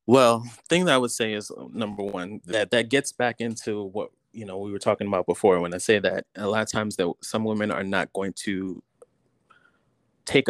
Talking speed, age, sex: 225 wpm, 30-49, male